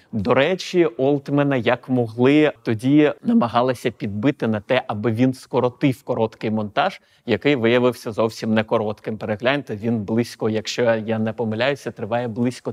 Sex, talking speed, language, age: male, 135 wpm, Ukrainian, 30-49